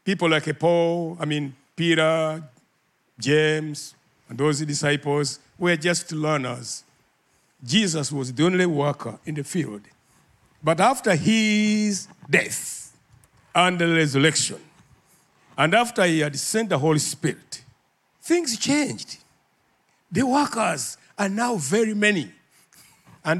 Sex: male